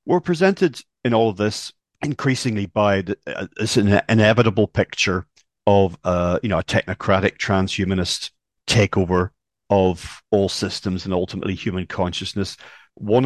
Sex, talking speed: male, 135 wpm